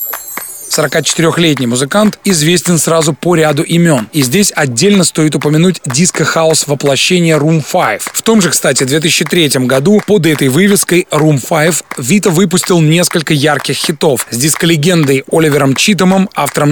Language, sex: Russian, male